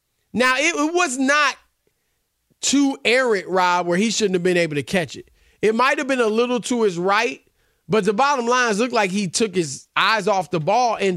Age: 40-59